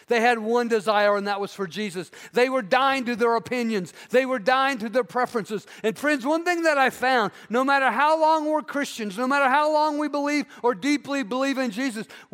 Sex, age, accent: male, 50-69, American